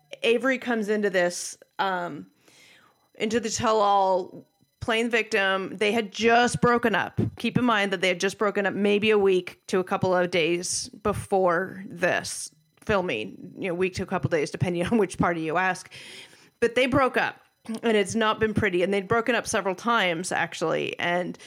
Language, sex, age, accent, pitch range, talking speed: English, female, 30-49, American, 180-225 Hz, 185 wpm